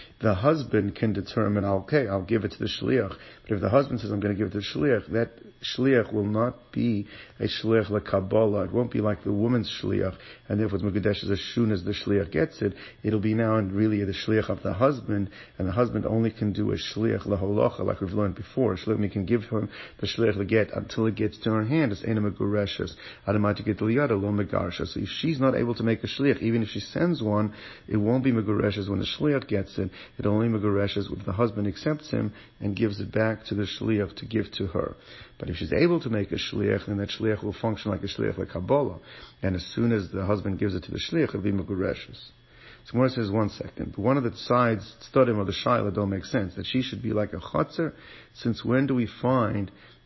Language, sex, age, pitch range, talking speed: English, male, 40-59, 100-115 Hz, 240 wpm